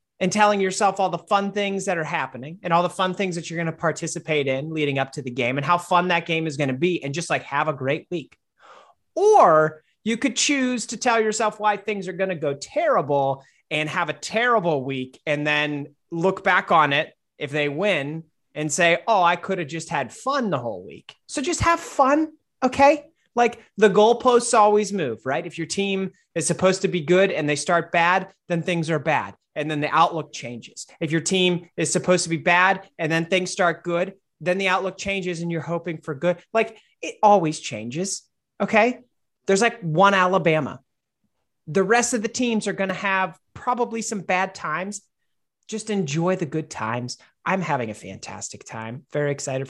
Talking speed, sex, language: 205 wpm, male, English